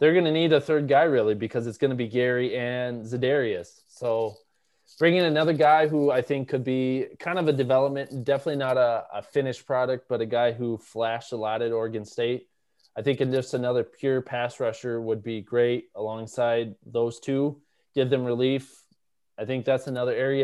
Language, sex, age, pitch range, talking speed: English, male, 20-39, 120-145 Hz, 195 wpm